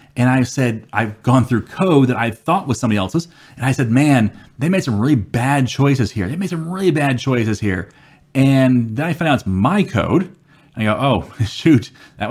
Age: 30-49